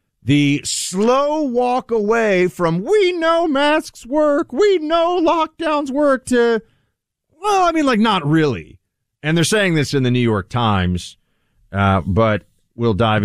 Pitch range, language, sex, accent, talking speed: 110-165 Hz, English, male, American, 150 wpm